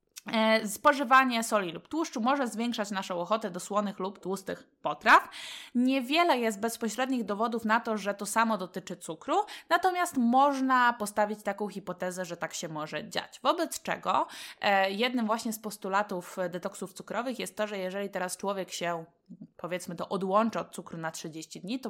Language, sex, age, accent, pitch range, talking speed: Polish, female, 20-39, native, 180-230 Hz, 160 wpm